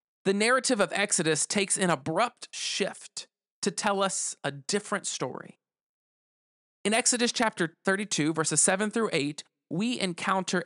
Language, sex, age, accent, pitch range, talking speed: English, male, 40-59, American, 155-200 Hz, 135 wpm